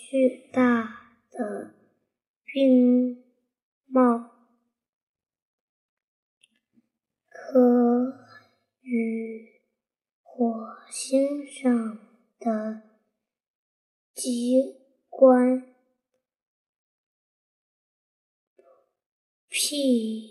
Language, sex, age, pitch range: Chinese, male, 10-29, 235-265 Hz